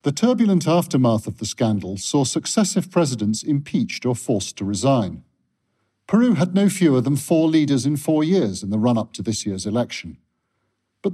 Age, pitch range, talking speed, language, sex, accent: 50-69, 110-165 Hz, 170 wpm, English, male, British